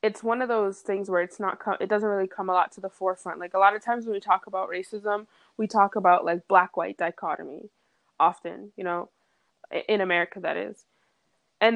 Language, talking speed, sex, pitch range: English, 220 wpm, female, 180-205 Hz